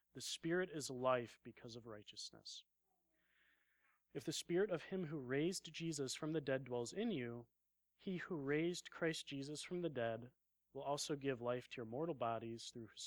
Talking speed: 180 wpm